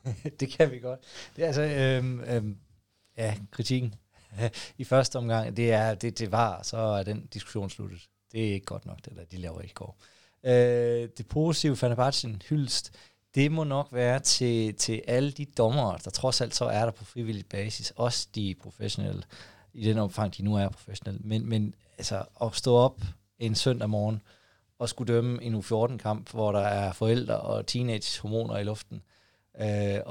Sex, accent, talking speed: male, native, 180 wpm